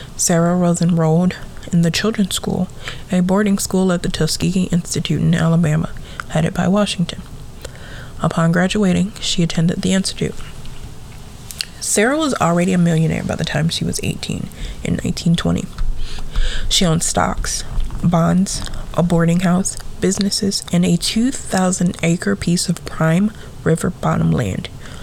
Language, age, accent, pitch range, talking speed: English, 20-39, American, 165-190 Hz, 135 wpm